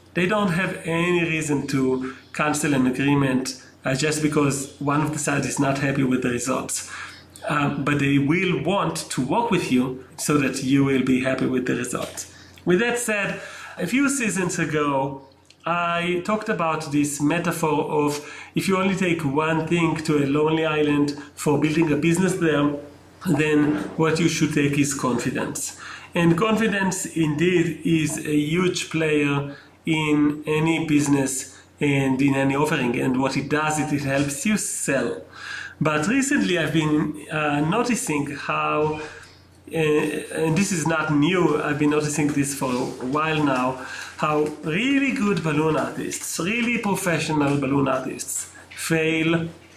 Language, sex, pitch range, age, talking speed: English, male, 140-170 Hz, 40-59, 155 wpm